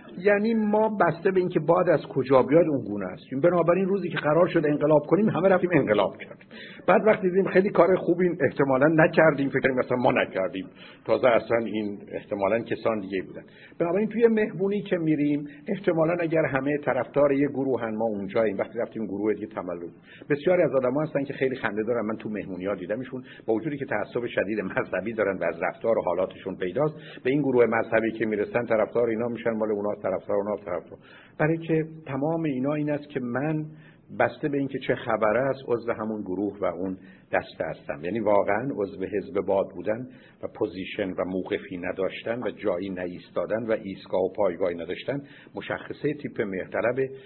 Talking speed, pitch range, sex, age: 180 wpm, 110-155 Hz, male, 60-79